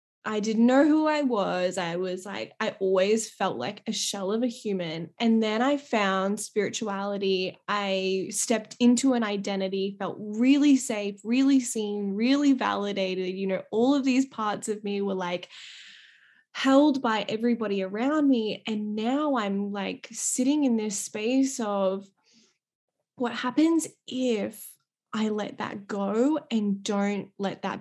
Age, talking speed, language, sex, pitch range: 10-29, 150 wpm, English, female, 200-250 Hz